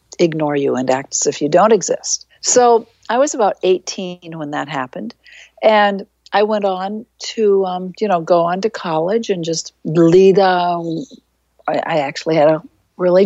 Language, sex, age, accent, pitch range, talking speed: English, female, 60-79, American, 170-215 Hz, 170 wpm